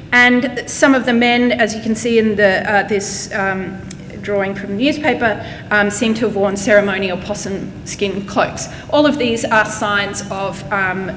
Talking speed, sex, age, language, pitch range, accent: 170 wpm, female, 30-49, English, 200-250 Hz, Australian